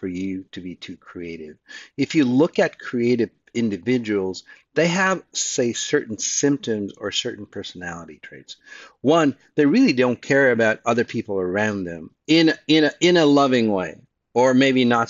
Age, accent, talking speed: 50-69, American, 165 wpm